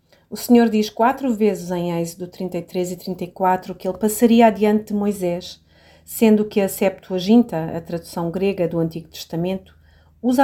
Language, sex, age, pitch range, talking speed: Portuguese, female, 30-49, 180-230 Hz, 155 wpm